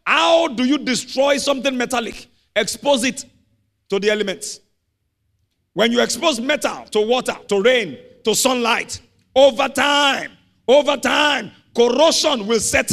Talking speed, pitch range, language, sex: 130 wpm, 215-280 Hz, English, male